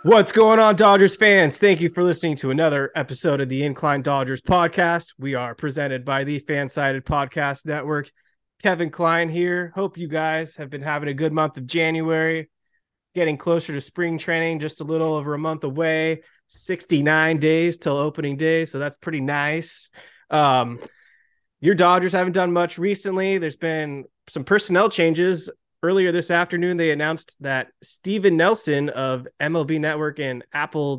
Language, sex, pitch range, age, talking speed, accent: English, male, 140-170 Hz, 20-39, 165 wpm, American